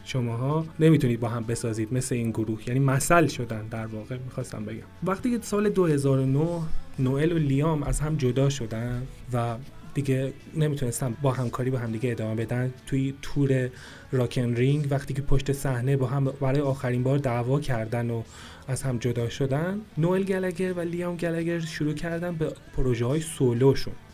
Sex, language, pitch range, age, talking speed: male, Persian, 130-160 Hz, 30-49, 170 wpm